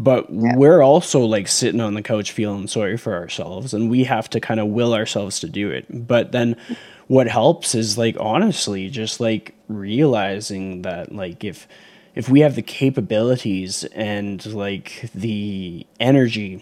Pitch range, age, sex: 110-135 Hz, 20-39, male